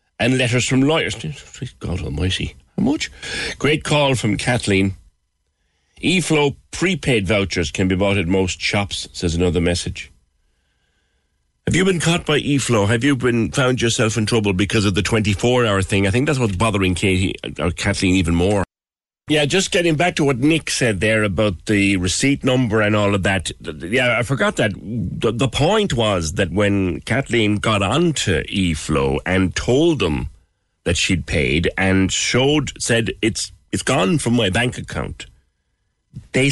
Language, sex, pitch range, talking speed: English, male, 90-125 Hz, 165 wpm